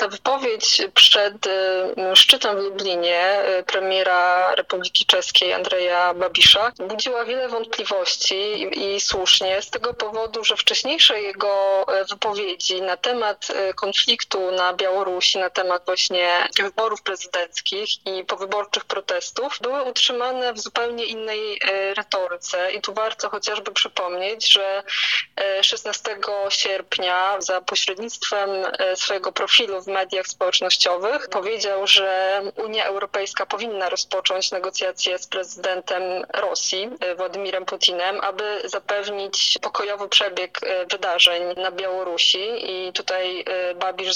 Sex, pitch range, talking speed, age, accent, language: female, 185-210 Hz, 105 wpm, 20-39, native, Polish